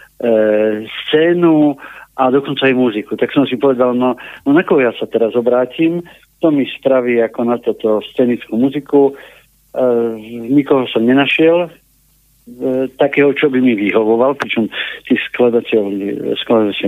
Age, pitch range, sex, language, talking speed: 50-69, 115-145 Hz, male, Slovak, 135 wpm